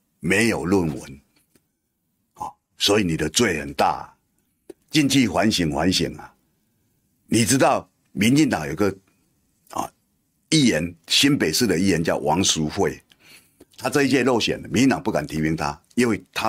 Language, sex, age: Chinese, male, 50-69